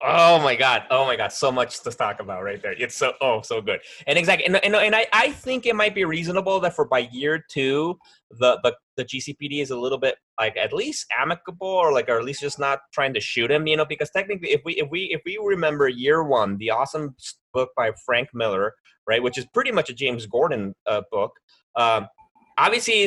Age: 20-39